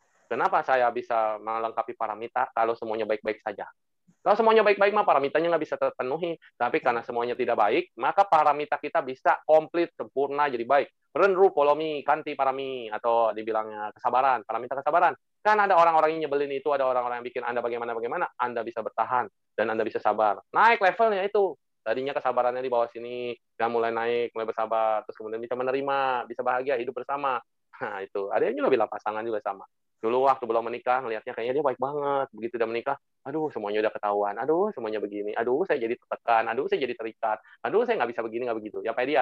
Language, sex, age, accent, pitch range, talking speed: Indonesian, male, 20-39, native, 120-160 Hz, 190 wpm